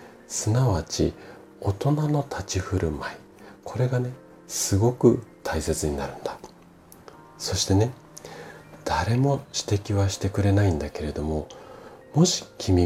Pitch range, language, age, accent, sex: 80-110 Hz, Japanese, 40-59, native, male